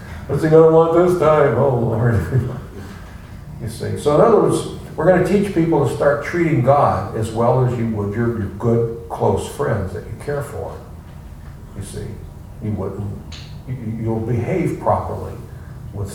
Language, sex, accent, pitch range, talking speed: English, male, American, 100-135 Hz, 175 wpm